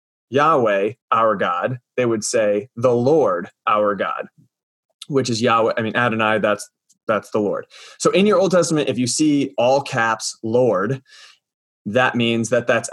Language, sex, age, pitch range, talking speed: English, male, 20-39, 110-135 Hz, 160 wpm